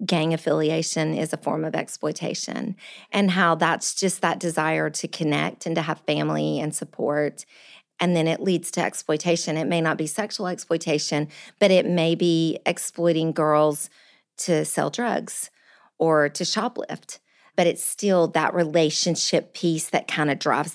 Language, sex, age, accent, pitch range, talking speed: English, female, 40-59, American, 170-235 Hz, 160 wpm